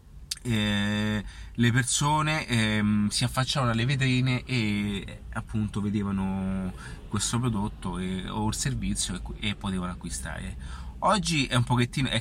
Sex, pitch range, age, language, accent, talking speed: male, 95-125 Hz, 30-49, Italian, native, 135 wpm